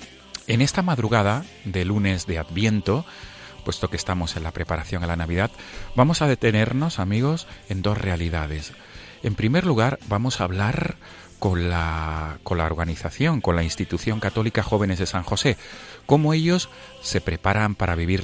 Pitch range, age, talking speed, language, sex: 85-110 Hz, 40-59, 160 wpm, Spanish, male